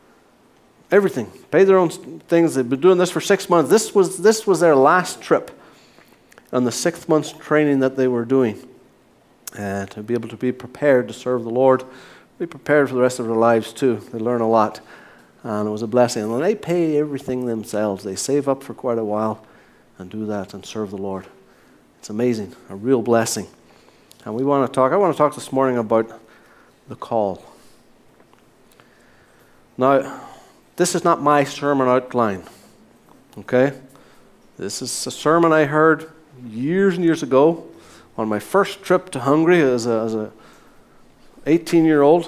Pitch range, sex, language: 115-165 Hz, male, English